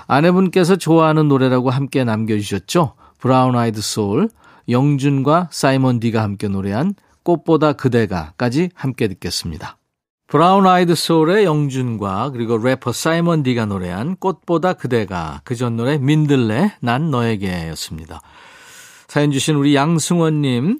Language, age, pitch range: Korean, 40-59, 115-160 Hz